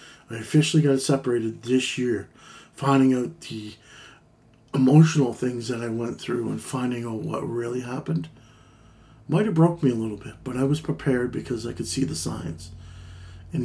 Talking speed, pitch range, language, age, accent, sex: 170 wpm, 115-135 Hz, English, 50-69, American, male